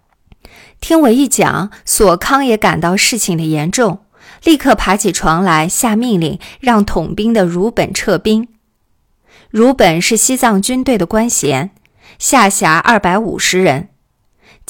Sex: female